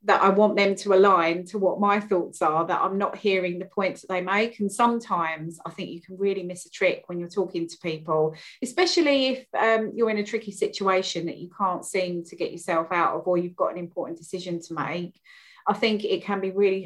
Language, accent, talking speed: English, British, 235 wpm